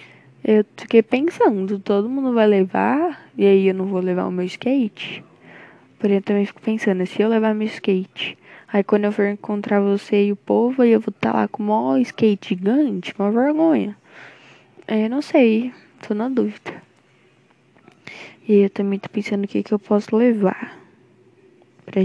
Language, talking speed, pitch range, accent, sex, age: Portuguese, 180 wpm, 195-230 Hz, Brazilian, female, 10-29